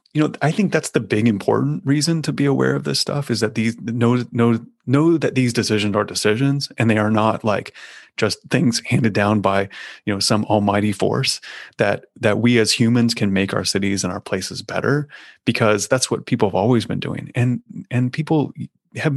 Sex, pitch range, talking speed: male, 110-140 Hz, 205 wpm